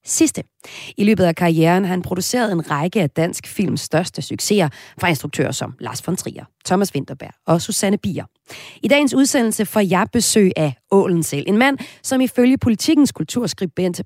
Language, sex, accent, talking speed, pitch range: Danish, female, native, 170 wpm, 150-225 Hz